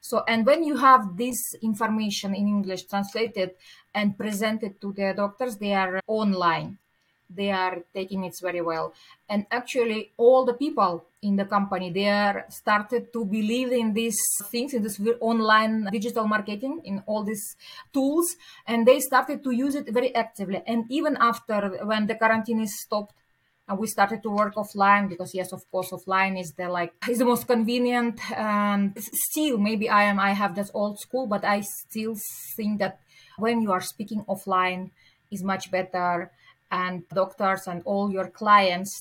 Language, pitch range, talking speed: English, 190-230 Hz, 170 wpm